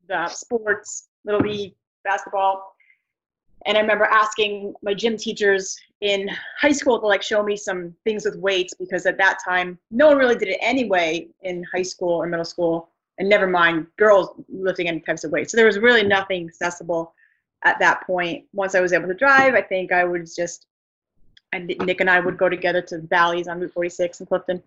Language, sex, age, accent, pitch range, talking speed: English, female, 30-49, American, 175-210 Hz, 205 wpm